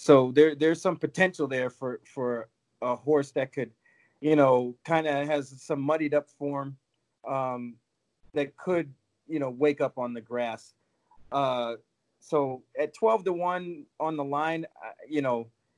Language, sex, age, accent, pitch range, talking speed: English, male, 30-49, American, 120-145 Hz, 160 wpm